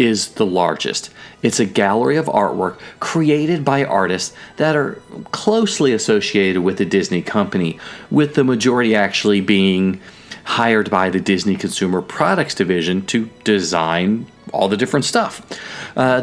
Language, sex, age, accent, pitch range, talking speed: English, male, 40-59, American, 95-140 Hz, 140 wpm